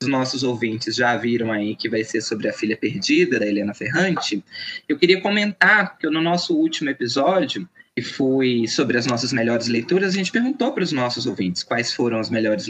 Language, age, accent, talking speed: Portuguese, 20-39, Brazilian, 200 wpm